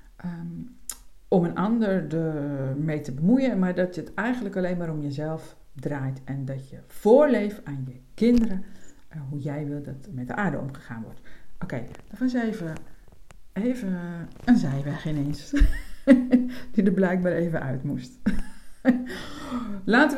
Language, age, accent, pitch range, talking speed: Dutch, 50-69, Dutch, 145-210 Hz, 150 wpm